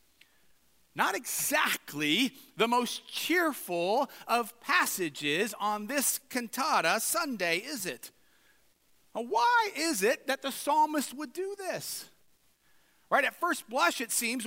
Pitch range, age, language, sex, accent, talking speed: 185-275 Hz, 40-59, English, male, American, 115 wpm